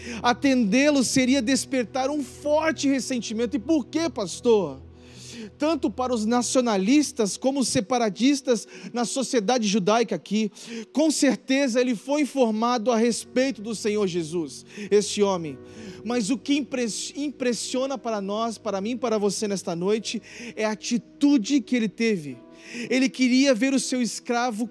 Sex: male